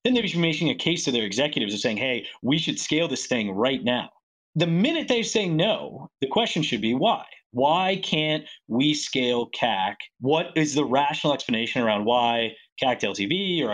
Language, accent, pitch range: English, American, 120-170 Hz